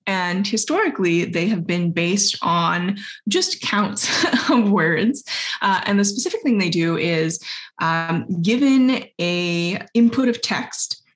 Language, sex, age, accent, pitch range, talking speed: English, female, 20-39, American, 170-225 Hz, 135 wpm